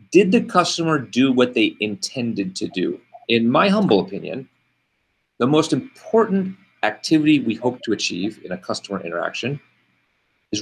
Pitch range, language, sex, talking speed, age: 115-160 Hz, English, male, 145 wpm, 40-59